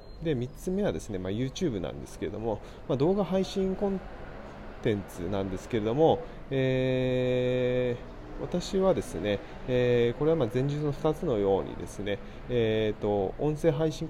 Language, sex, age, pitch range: Japanese, male, 20-39, 105-155 Hz